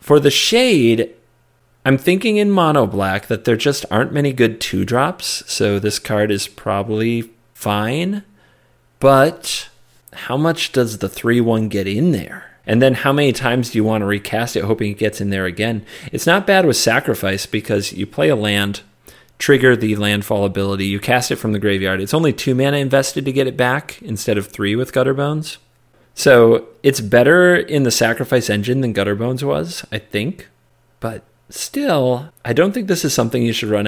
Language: English